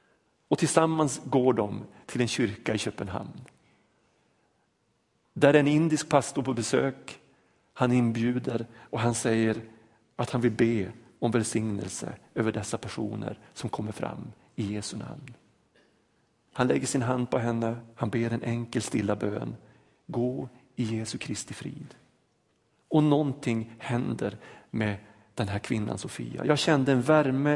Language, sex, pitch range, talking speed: Swedish, male, 110-135 Hz, 140 wpm